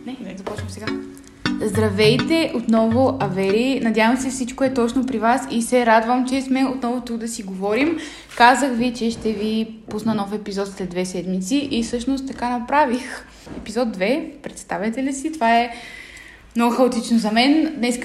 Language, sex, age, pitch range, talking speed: Bulgarian, female, 20-39, 210-255 Hz, 170 wpm